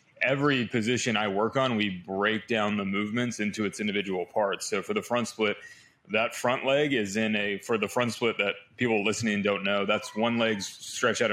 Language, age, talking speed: English, 20-39, 205 wpm